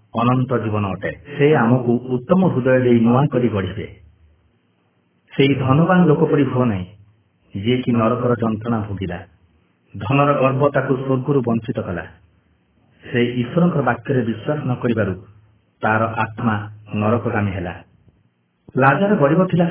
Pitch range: 95-140 Hz